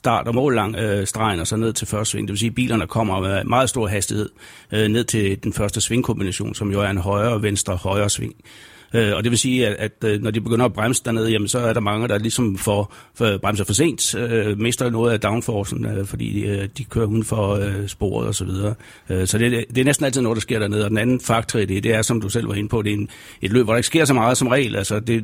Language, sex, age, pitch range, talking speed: Danish, male, 60-79, 105-120 Hz, 280 wpm